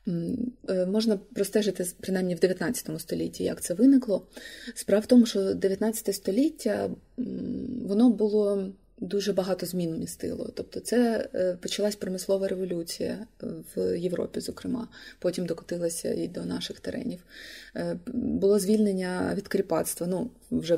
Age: 20-39